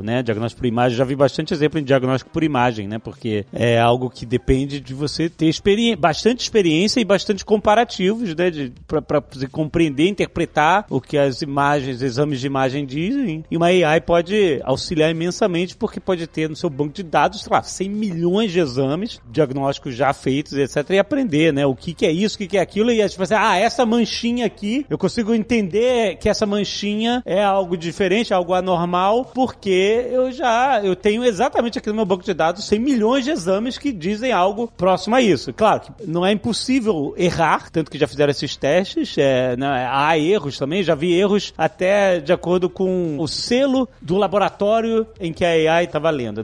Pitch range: 145-205 Hz